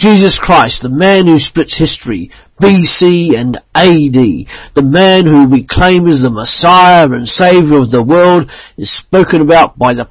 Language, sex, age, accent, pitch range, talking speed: English, male, 50-69, British, 120-160 Hz, 165 wpm